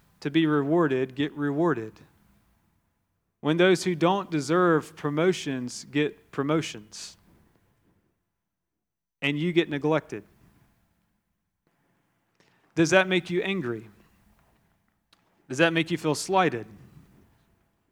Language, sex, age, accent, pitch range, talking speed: English, male, 40-59, American, 130-170 Hz, 95 wpm